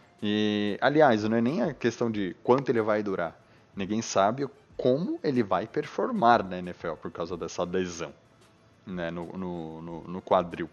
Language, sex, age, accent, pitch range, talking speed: Portuguese, male, 30-49, Brazilian, 100-120 Hz, 160 wpm